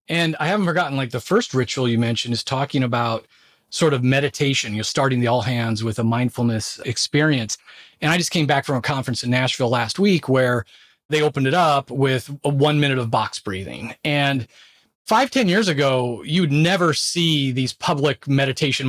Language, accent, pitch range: English, American, 135-185 Hz